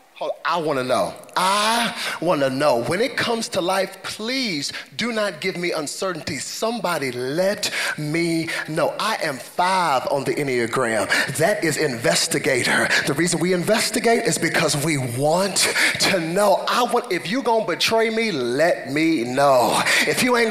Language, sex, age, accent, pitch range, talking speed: English, male, 30-49, American, 205-330 Hz, 165 wpm